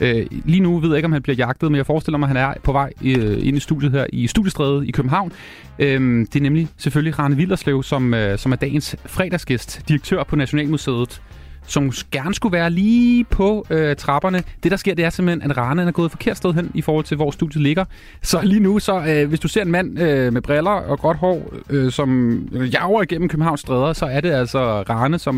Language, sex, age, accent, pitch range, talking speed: Danish, male, 30-49, native, 125-165 Hz, 215 wpm